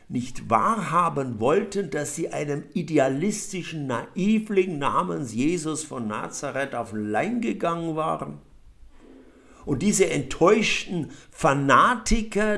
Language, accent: German, German